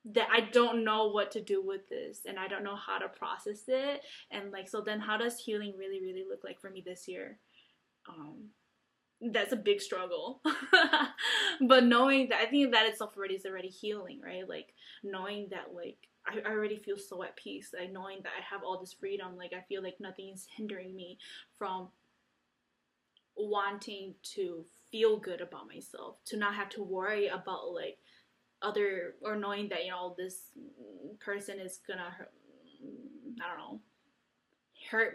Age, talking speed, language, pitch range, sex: 10-29, 180 wpm, English, 190-265 Hz, female